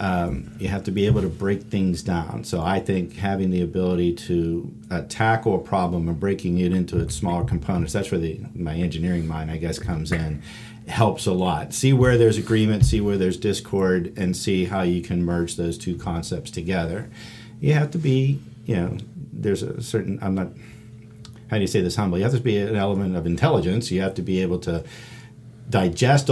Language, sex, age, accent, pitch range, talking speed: English, male, 50-69, American, 85-110 Hz, 205 wpm